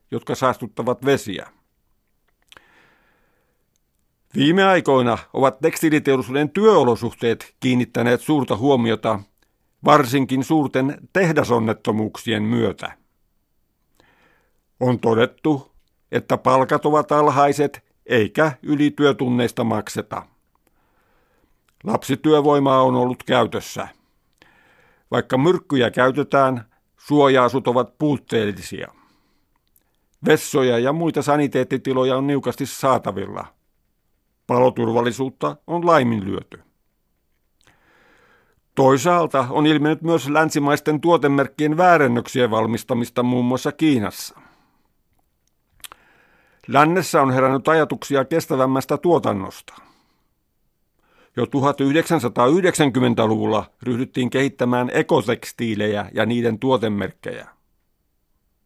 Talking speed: 70 wpm